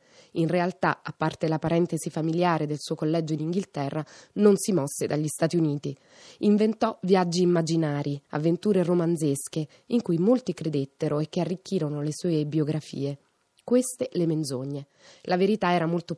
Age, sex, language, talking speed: 20-39, female, Italian, 150 wpm